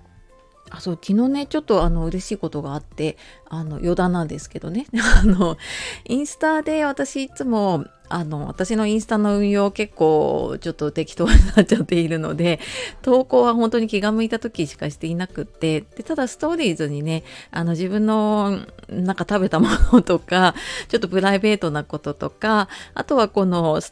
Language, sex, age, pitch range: Japanese, female, 30-49, 160-235 Hz